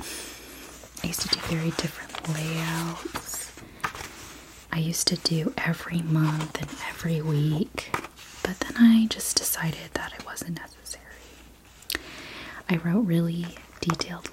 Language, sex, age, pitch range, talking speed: English, female, 30-49, 160-185 Hz, 115 wpm